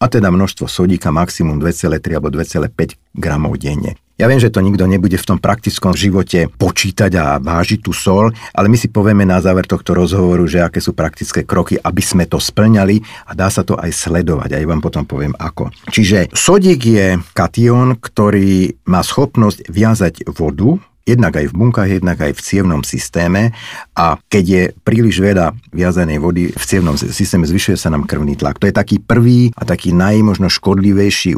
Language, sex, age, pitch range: Slovak, male, 50-69, 85-105 Hz